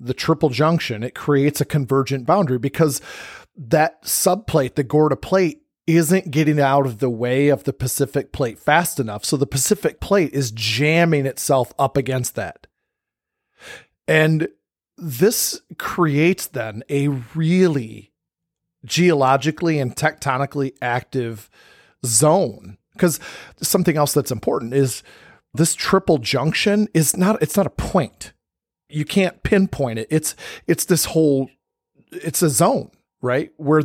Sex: male